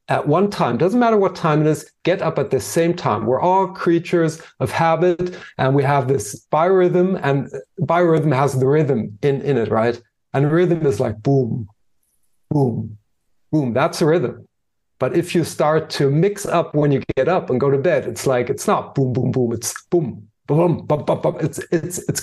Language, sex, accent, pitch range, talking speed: English, male, German, 135-175 Hz, 210 wpm